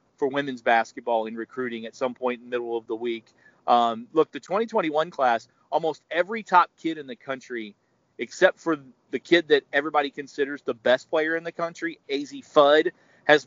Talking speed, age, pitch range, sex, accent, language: 185 wpm, 40-59, 130-155 Hz, male, American, English